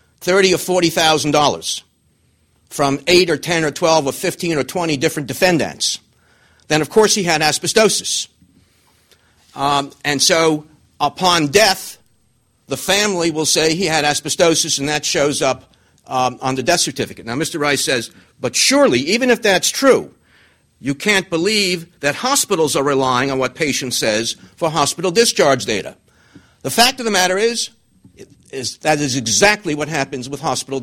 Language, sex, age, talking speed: English, male, 50-69, 160 wpm